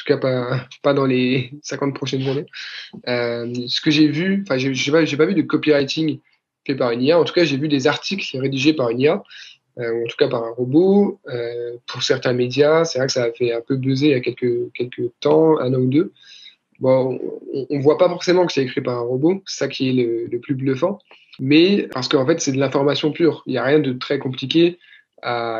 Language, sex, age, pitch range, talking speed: French, male, 20-39, 125-155 Hz, 245 wpm